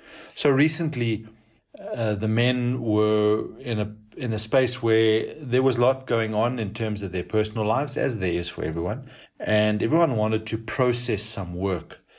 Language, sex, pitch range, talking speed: English, male, 100-120 Hz, 175 wpm